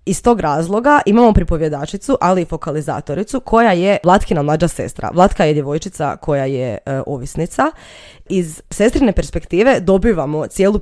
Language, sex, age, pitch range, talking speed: Croatian, female, 20-39, 160-210 Hz, 140 wpm